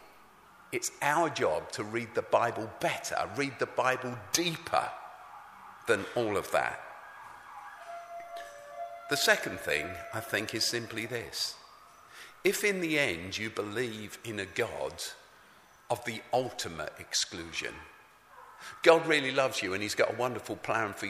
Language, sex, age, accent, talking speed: English, male, 50-69, British, 135 wpm